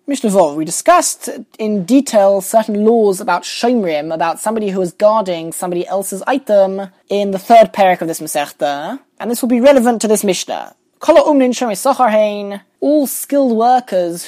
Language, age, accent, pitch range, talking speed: English, 20-39, British, 190-240 Hz, 145 wpm